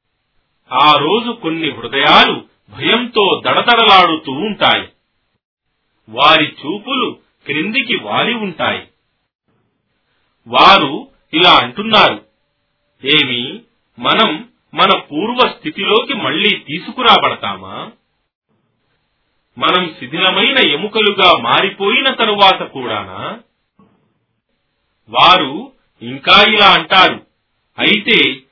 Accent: native